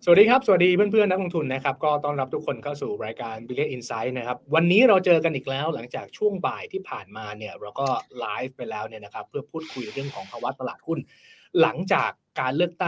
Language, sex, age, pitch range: Thai, male, 20-39, 130-195 Hz